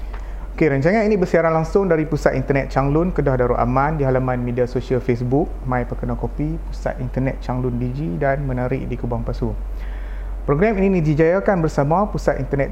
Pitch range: 120-145 Hz